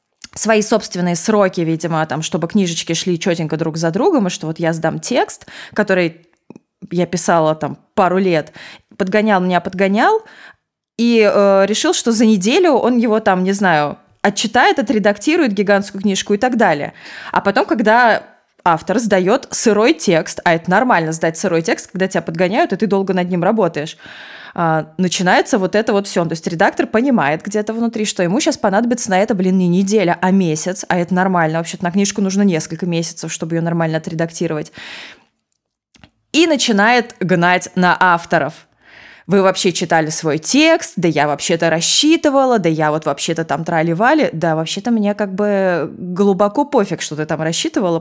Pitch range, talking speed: 170-215 Hz, 165 wpm